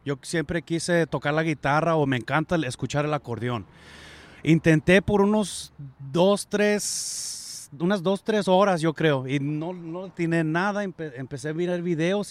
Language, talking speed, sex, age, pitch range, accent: English, 160 wpm, male, 30-49, 130-165 Hz, Mexican